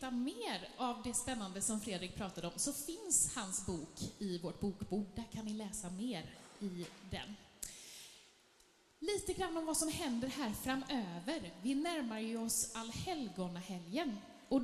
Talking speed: 150 wpm